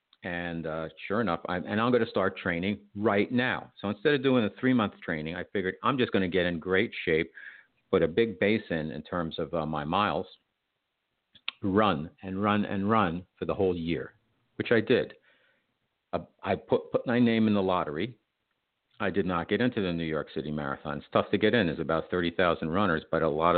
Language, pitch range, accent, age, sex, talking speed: English, 80-105 Hz, American, 50-69, male, 215 wpm